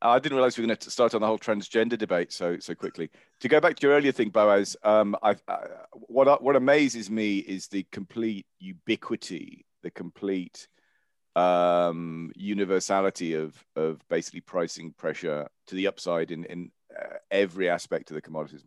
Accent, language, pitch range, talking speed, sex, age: British, English, 80-105 Hz, 175 wpm, male, 40-59